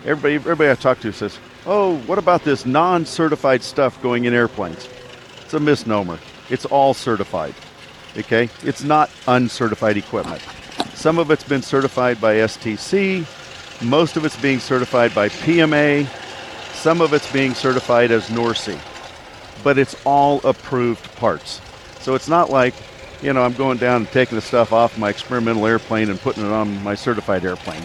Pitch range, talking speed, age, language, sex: 115-150 Hz, 165 wpm, 50-69, English, male